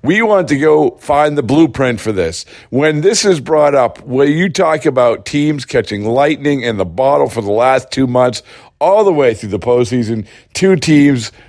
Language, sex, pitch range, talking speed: English, male, 115-150 Hz, 195 wpm